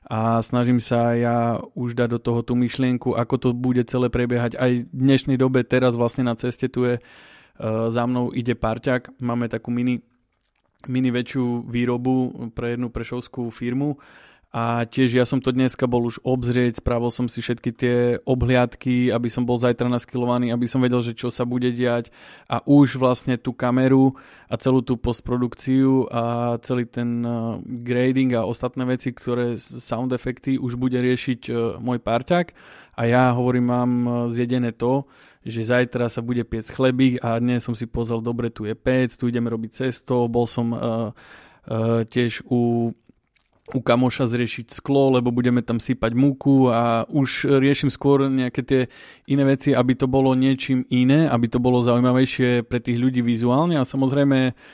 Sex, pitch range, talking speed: male, 120-130 Hz, 170 wpm